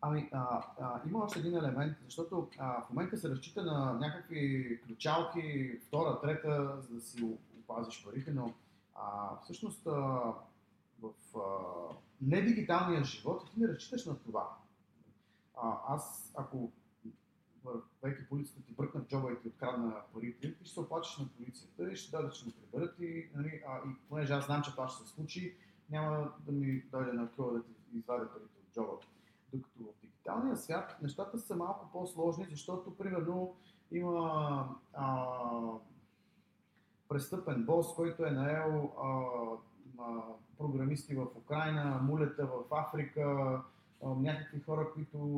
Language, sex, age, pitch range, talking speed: Bulgarian, male, 30-49, 130-165 Hz, 145 wpm